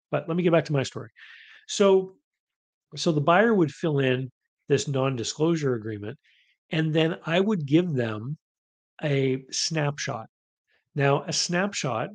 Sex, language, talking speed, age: male, English, 145 wpm, 40-59